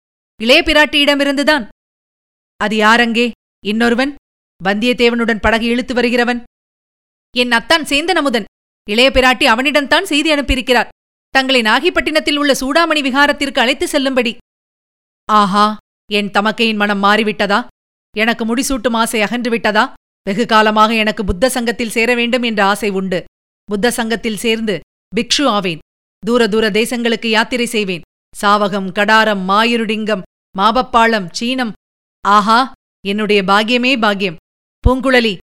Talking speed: 110 wpm